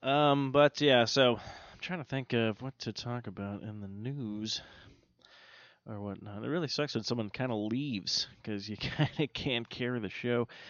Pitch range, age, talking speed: 100-130 Hz, 20-39, 185 wpm